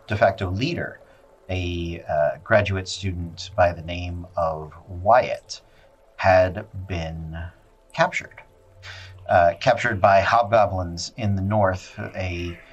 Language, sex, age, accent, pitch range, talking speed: English, male, 40-59, American, 85-105 Hz, 110 wpm